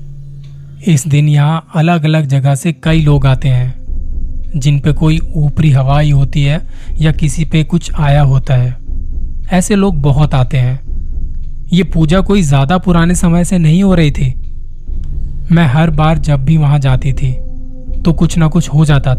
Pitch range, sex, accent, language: 130-155 Hz, male, native, Hindi